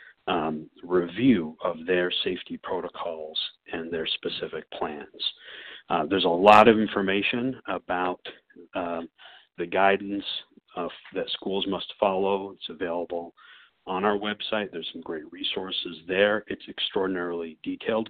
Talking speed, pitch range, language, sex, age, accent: 125 wpm, 85-100 Hz, English, male, 50-69, American